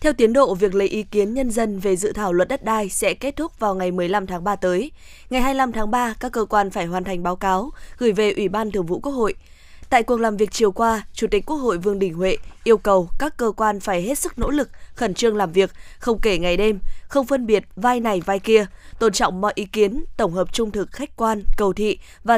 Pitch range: 195-245 Hz